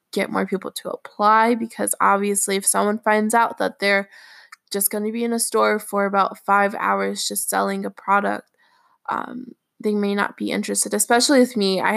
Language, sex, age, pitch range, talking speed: English, female, 20-39, 195-235 Hz, 190 wpm